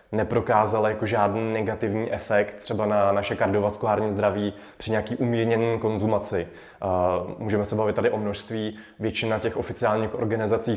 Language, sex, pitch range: Czech, male, 105-115 Hz